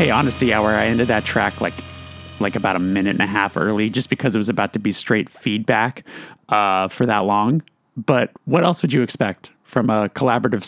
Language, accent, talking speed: English, American, 215 wpm